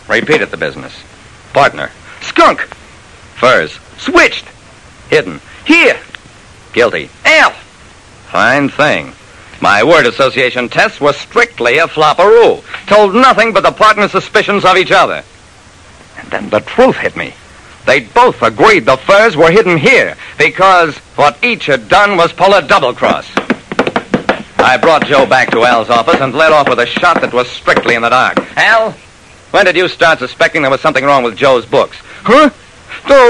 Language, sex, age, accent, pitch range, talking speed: English, male, 60-79, American, 150-235 Hz, 160 wpm